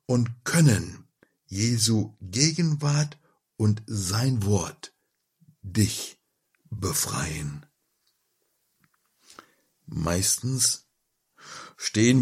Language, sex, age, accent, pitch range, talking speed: German, male, 60-79, German, 95-145 Hz, 55 wpm